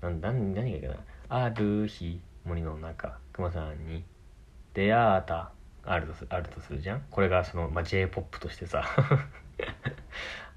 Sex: male